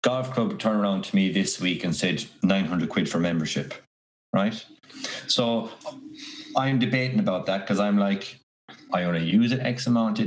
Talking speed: 175 wpm